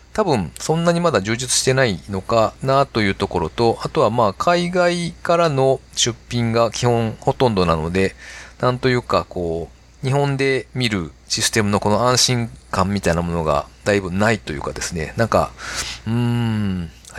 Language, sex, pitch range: Japanese, male, 90-130 Hz